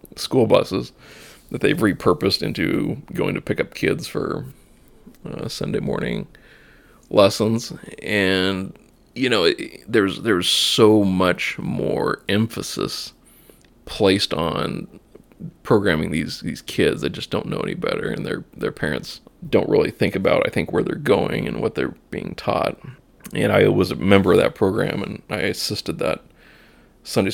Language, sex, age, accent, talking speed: English, male, 20-39, American, 150 wpm